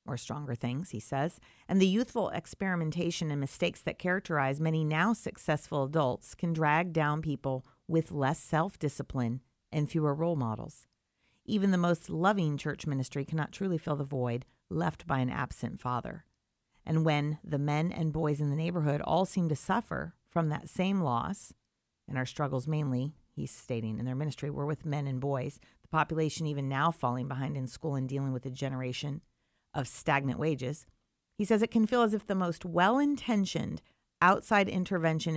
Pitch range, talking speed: 140-175 Hz, 175 wpm